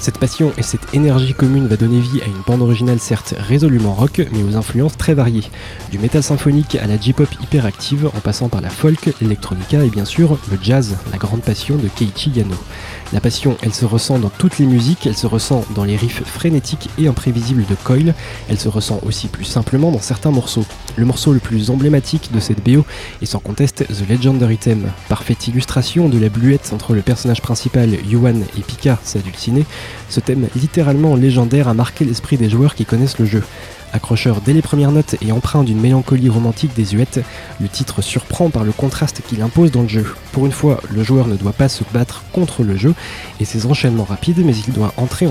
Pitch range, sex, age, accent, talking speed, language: 110-135 Hz, male, 20-39, French, 210 wpm, French